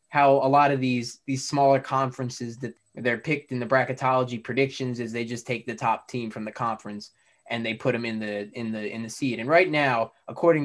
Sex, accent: male, American